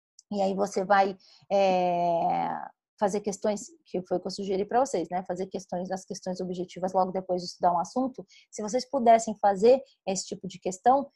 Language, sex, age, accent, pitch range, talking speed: Portuguese, female, 20-39, Brazilian, 190-235 Hz, 190 wpm